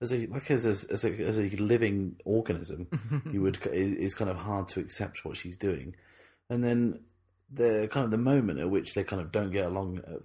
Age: 30-49